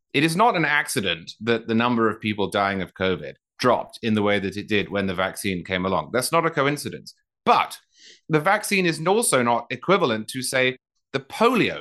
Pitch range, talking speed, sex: 115-160 Hz, 205 wpm, male